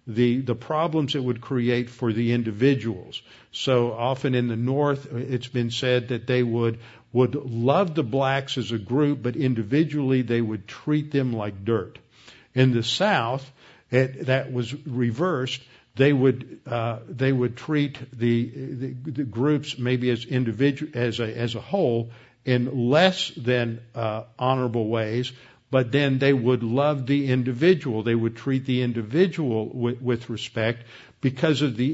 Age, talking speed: 50-69, 160 wpm